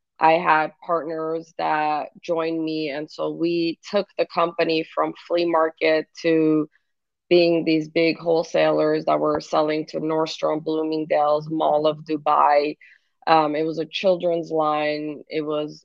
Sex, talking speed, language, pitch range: female, 140 wpm, English, 155-170 Hz